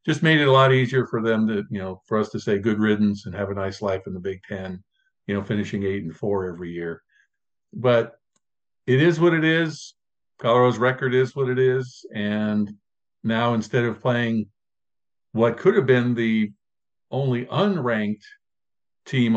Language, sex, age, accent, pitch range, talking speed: English, male, 50-69, American, 105-130 Hz, 185 wpm